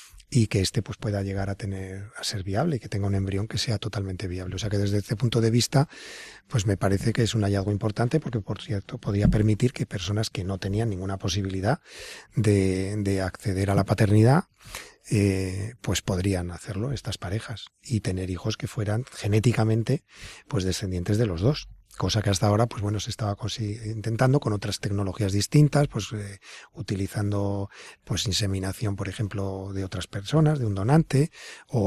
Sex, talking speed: male, 185 wpm